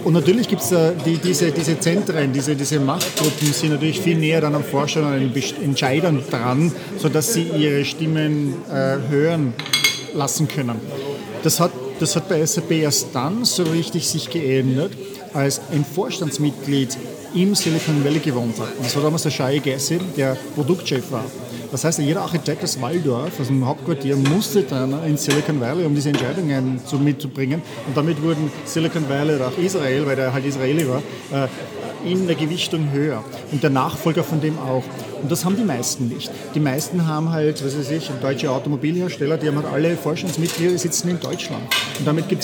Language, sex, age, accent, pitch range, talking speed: English, male, 40-59, German, 135-165 Hz, 185 wpm